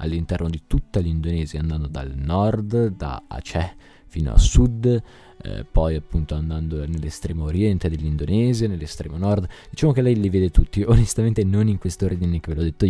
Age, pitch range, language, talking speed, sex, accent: 20-39, 80-100 Hz, Italian, 170 wpm, male, native